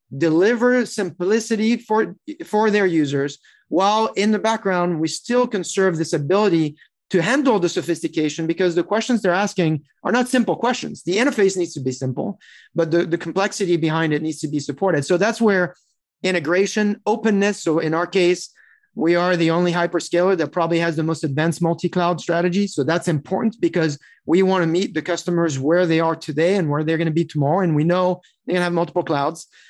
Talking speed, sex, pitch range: 190 wpm, male, 165-195 Hz